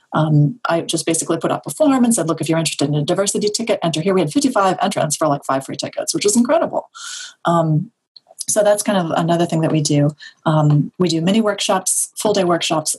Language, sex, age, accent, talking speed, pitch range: English, female, 30-49, American, 230 wpm, 160-210 Hz